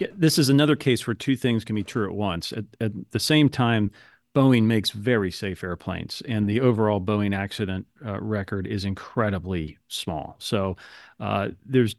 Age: 40-59